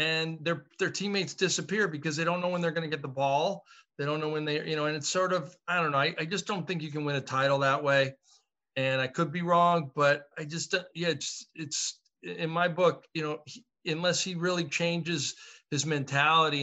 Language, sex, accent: English, male, American